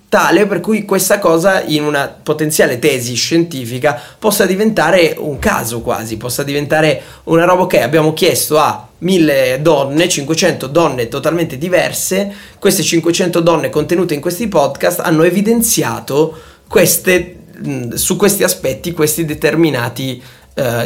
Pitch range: 120-170 Hz